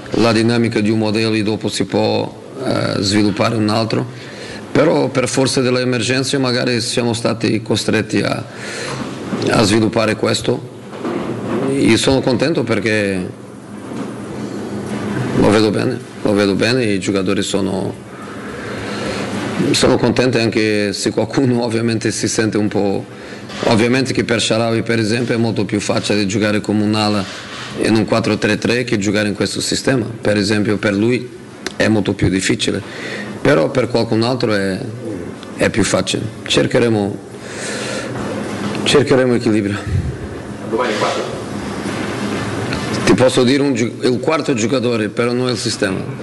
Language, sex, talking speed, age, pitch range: Italian, male, 130 wpm, 40-59, 105-120 Hz